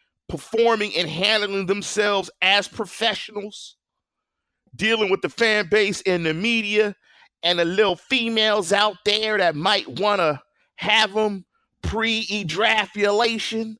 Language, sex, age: English, male, 40-59